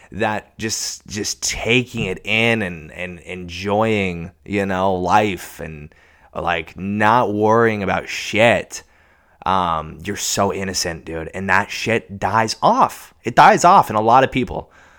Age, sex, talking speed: 20-39, male, 145 wpm